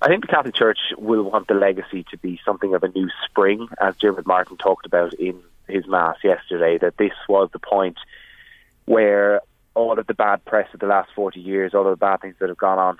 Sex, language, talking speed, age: male, English, 230 wpm, 20-39